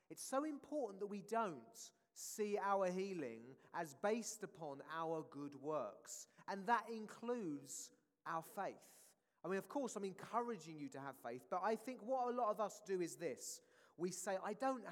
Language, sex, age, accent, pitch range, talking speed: English, male, 30-49, British, 185-250 Hz, 180 wpm